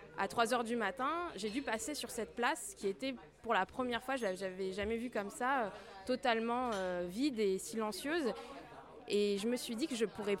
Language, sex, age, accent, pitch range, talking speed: French, female, 20-39, French, 205-250 Hz, 200 wpm